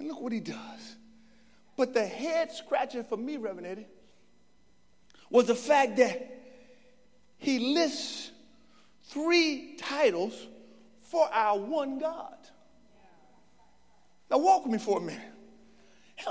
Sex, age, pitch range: male, 40-59, 235-305 Hz